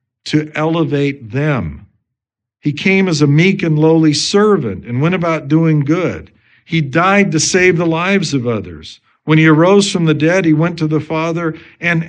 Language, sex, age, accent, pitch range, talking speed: English, male, 50-69, American, 120-165 Hz, 180 wpm